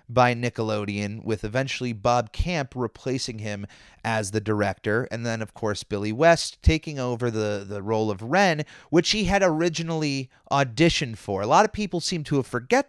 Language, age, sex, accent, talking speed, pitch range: English, 30-49, male, American, 175 wpm, 110-140 Hz